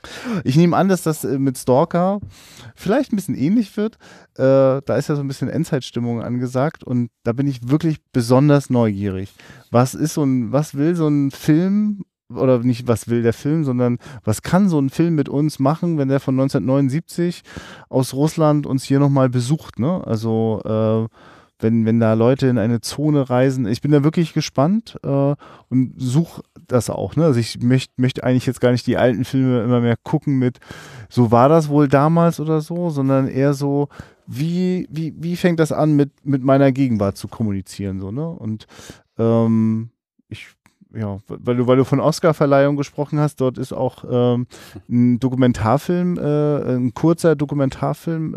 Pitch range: 125-150 Hz